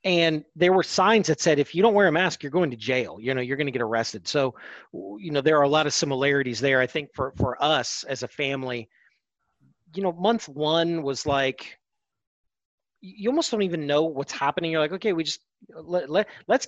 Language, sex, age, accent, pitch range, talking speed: English, male, 40-59, American, 135-180 Hz, 215 wpm